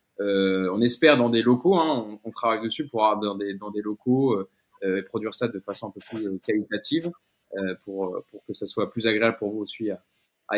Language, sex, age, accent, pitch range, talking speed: French, male, 20-39, French, 105-135 Hz, 220 wpm